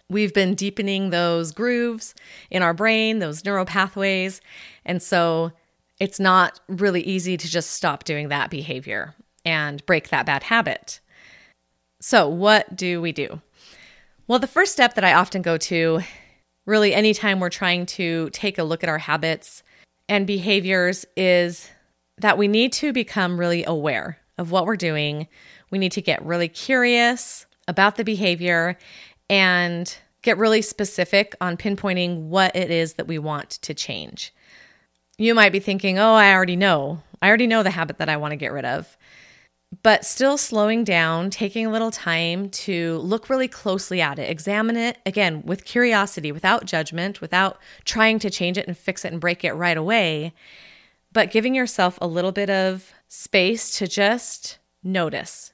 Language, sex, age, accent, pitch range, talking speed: English, female, 30-49, American, 170-210 Hz, 165 wpm